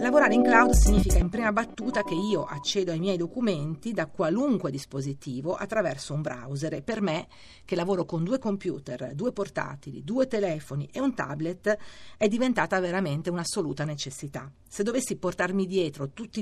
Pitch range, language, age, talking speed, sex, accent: 150-200 Hz, Italian, 40-59, 160 wpm, female, native